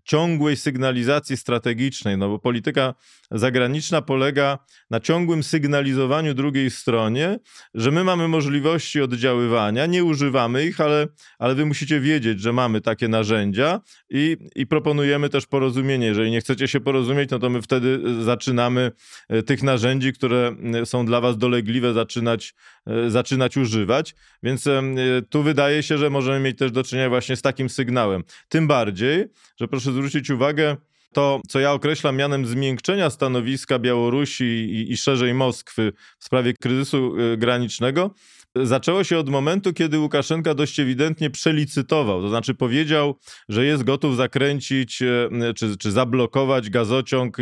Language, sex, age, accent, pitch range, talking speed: Polish, male, 20-39, native, 120-145 Hz, 140 wpm